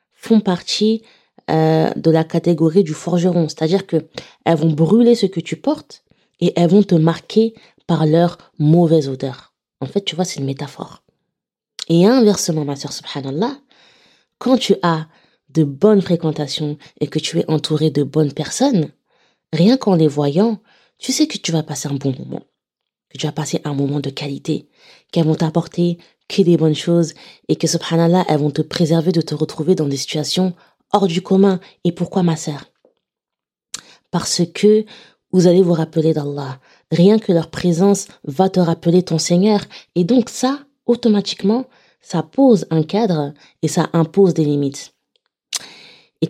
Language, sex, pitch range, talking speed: French, female, 155-200 Hz, 165 wpm